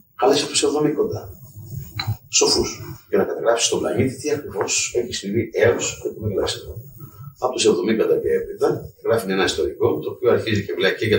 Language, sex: Greek, male